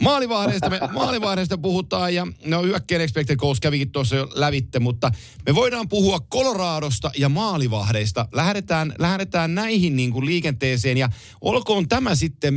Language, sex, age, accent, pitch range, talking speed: Finnish, male, 50-69, native, 125-180 Hz, 140 wpm